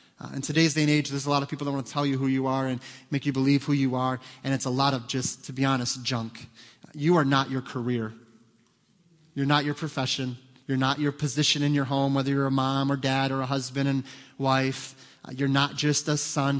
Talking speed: 250 wpm